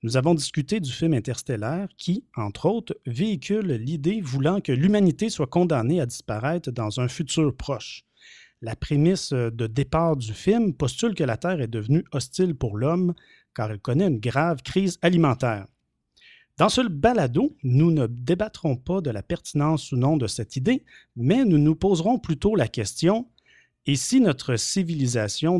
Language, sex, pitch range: French, male, 130-185 Hz